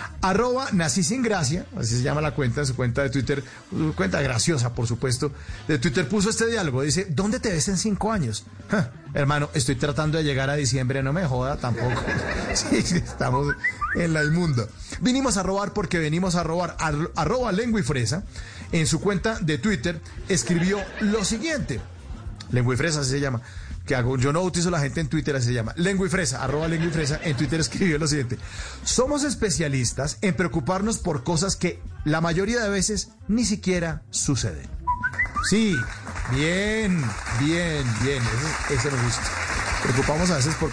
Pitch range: 135-195 Hz